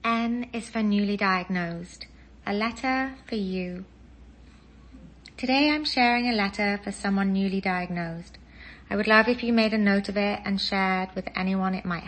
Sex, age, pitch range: female, 30-49, 165-200 Hz